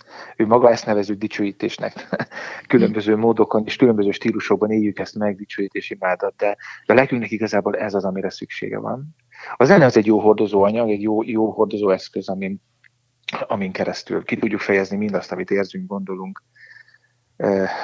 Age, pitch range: 30-49, 100-115 Hz